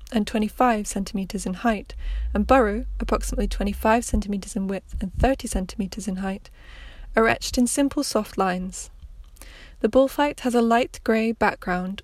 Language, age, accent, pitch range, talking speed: English, 20-39, British, 195-235 Hz, 160 wpm